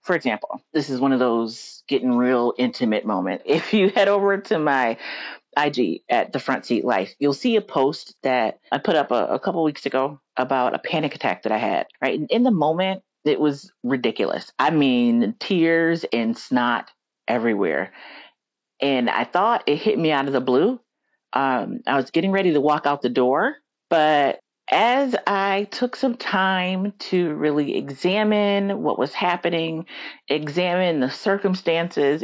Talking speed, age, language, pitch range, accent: 175 wpm, 40-59, English, 130-195 Hz, American